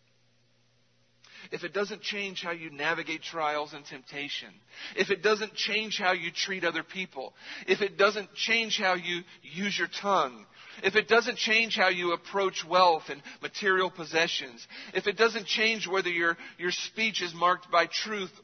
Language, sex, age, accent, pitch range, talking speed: English, male, 40-59, American, 120-195 Hz, 165 wpm